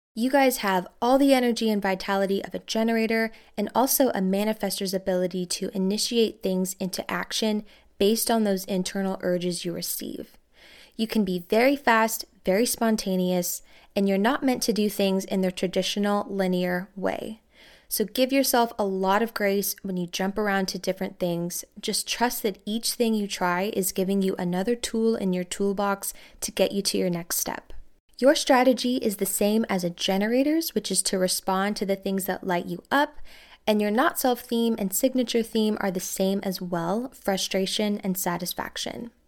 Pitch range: 185-225 Hz